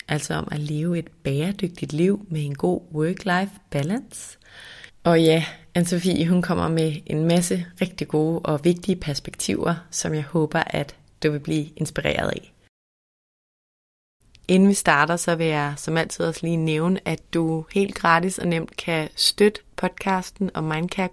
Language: Danish